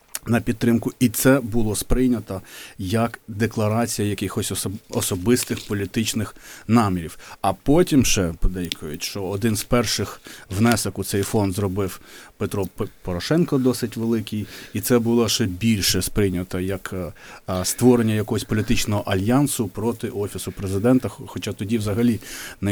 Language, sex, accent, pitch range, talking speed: Ukrainian, male, native, 95-115 Hz, 125 wpm